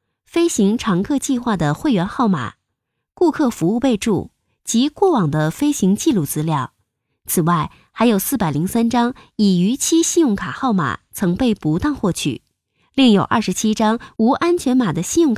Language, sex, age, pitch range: Chinese, female, 20-39, 160-260 Hz